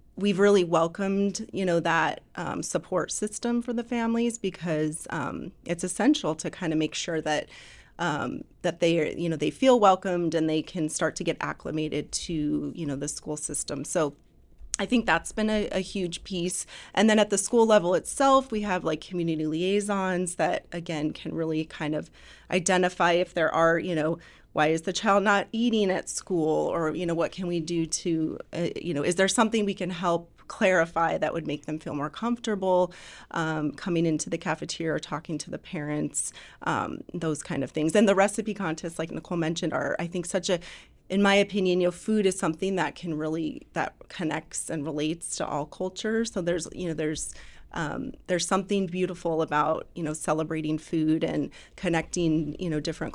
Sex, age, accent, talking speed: female, 30-49, American, 195 wpm